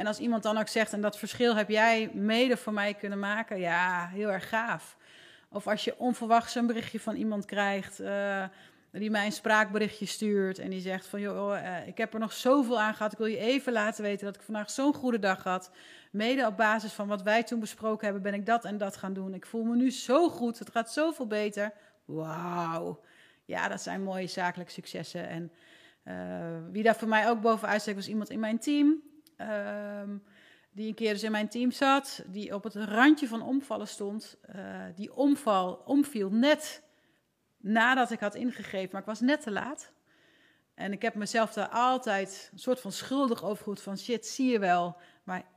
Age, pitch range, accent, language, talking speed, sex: 30-49, 195-235 Hz, Dutch, Dutch, 205 wpm, female